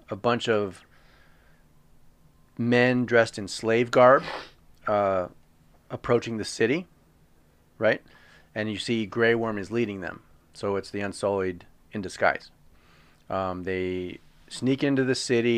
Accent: American